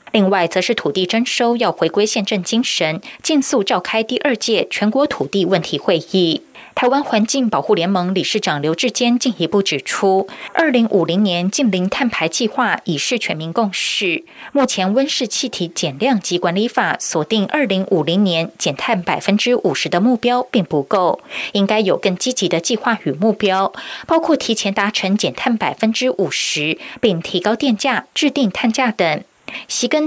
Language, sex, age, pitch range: Chinese, female, 20-39, 180-245 Hz